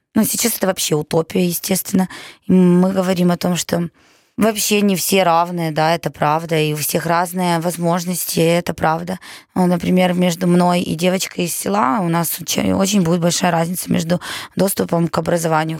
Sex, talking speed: female, 160 wpm